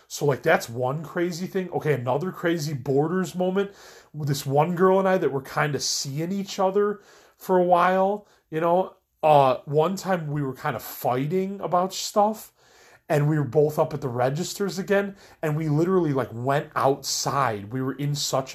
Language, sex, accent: English, male, American